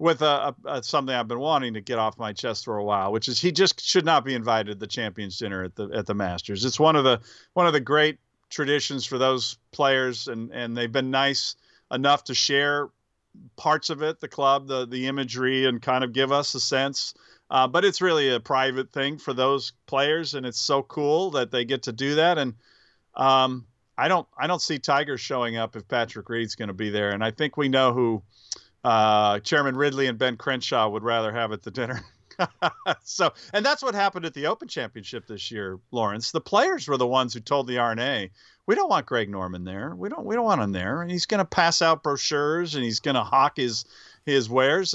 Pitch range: 115-150 Hz